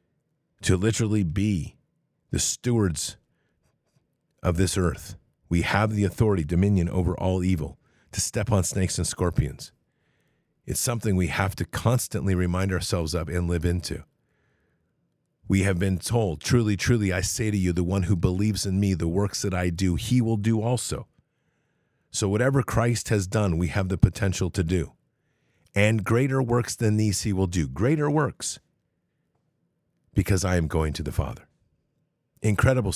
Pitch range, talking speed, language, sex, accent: 90-115 Hz, 160 wpm, English, male, American